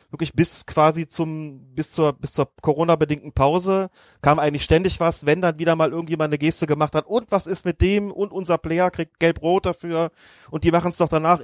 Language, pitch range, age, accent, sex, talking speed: German, 140-180 Hz, 30-49, German, male, 210 wpm